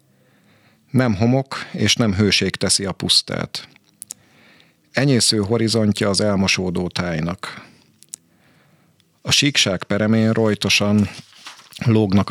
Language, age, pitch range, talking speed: Hungarian, 50-69, 95-115 Hz, 90 wpm